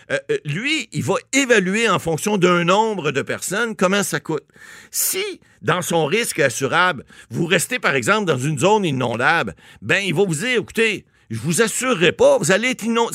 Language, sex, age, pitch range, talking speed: French, male, 60-79, 140-215 Hz, 190 wpm